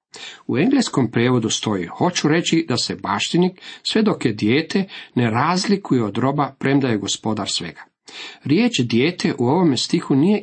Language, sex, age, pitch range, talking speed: Croatian, male, 40-59, 115-155 Hz, 155 wpm